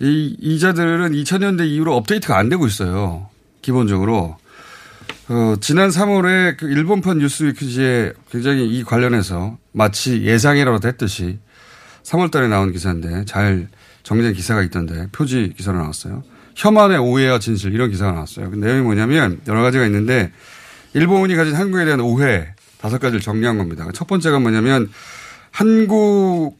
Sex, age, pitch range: male, 30-49, 115-175 Hz